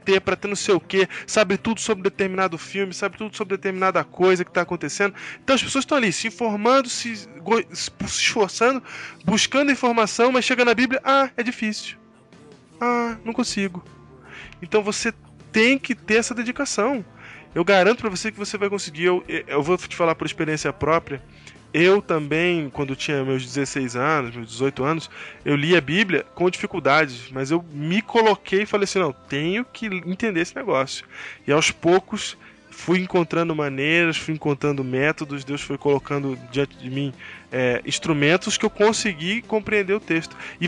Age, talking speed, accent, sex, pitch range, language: 20-39, 170 wpm, Brazilian, male, 155-210 Hz, Portuguese